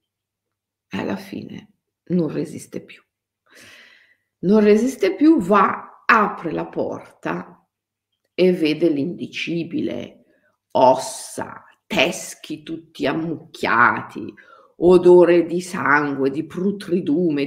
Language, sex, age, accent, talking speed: Italian, female, 50-69, native, 85 wpm